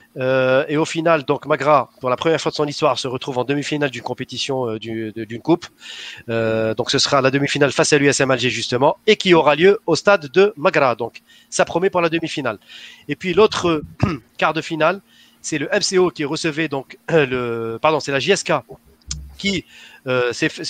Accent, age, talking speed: French, 40-59, 205 wpm